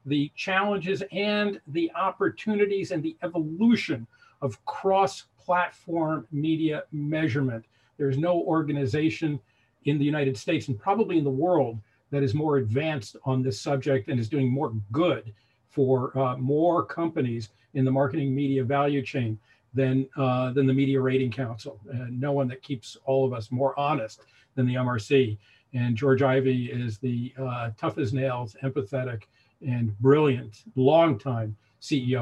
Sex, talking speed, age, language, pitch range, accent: male, 145 wpm, 50-69, English, 125-180 Hz, American